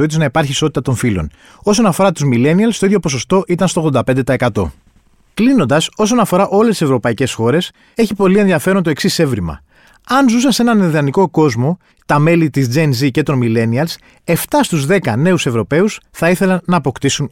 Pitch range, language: 130-180 Hz, Greek